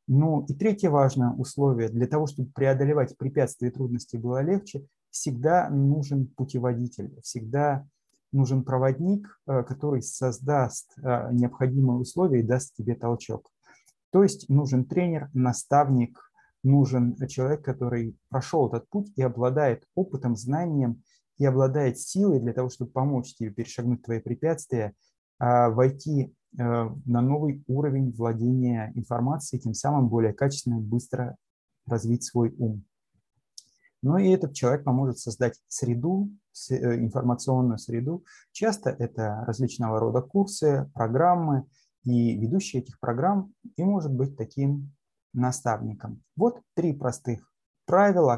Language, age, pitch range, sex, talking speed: Russian, 30-49, 120-145 Hz, male, 120 wpm